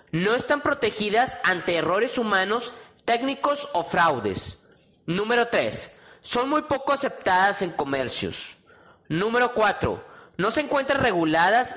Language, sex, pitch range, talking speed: Spanish, male, 180-255 Hz, 115 wpm